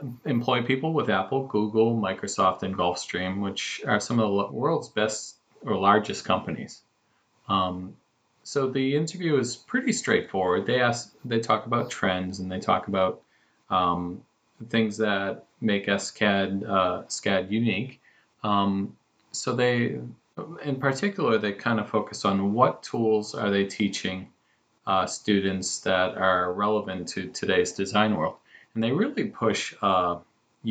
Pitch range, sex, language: 95-120 Hz, male, English